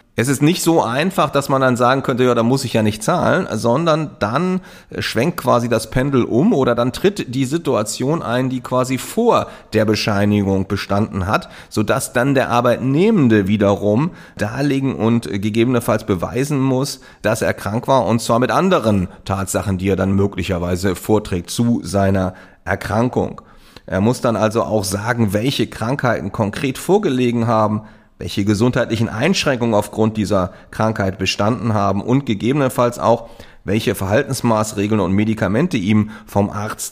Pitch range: 100-125 Hz